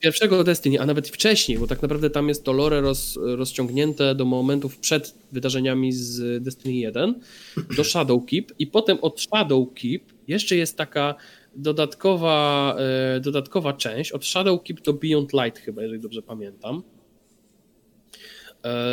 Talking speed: 140 wpm